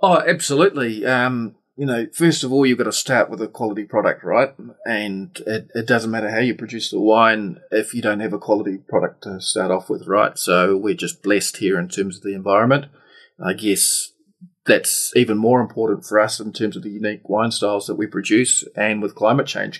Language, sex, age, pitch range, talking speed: English, male, 30-49, 105-155 Hz, 215 wpm